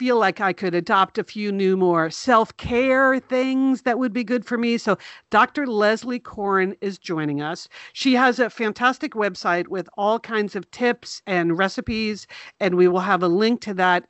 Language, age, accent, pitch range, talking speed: English, 50-69, American, 175-230 Hz, 190 wpm